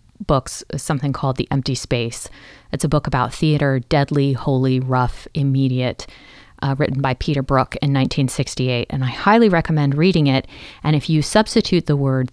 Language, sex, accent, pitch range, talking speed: English, female, American, 130-165 Hz, 165 wpm